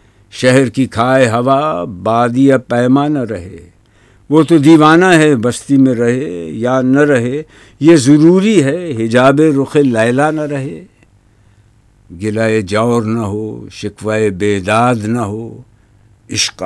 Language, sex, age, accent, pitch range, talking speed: English, male, 60-79, Indian, 105-145 Hz, 130 wpm